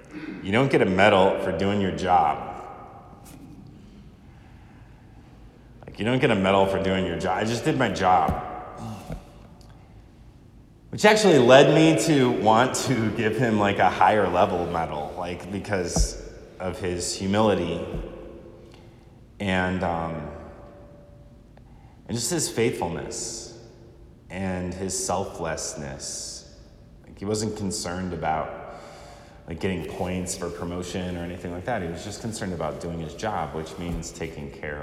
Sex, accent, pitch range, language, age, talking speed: male, American, 85-115 Hz, English, 30-49, 135 wpm